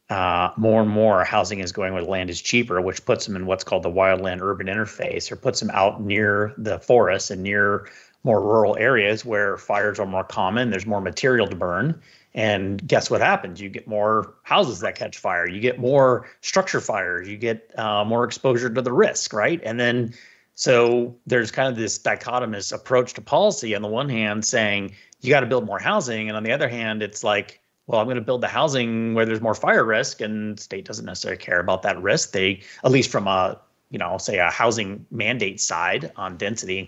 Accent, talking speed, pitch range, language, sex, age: American, 215 wpm, 105-135 Hz, English, male, 30-49